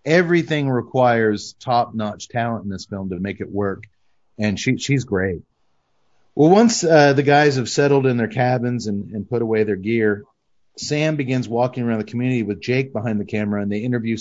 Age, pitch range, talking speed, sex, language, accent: 30-49, 110-150 Hz, 185 wpm, male, English, American